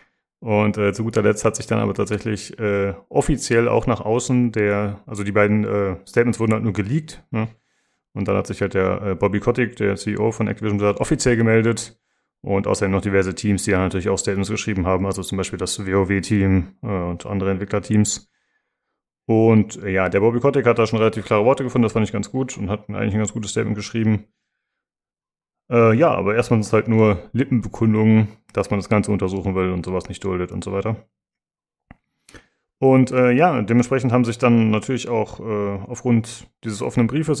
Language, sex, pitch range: German, male, 100-120 Hz